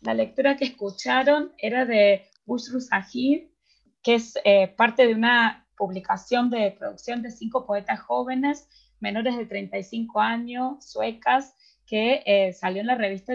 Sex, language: female, Spanish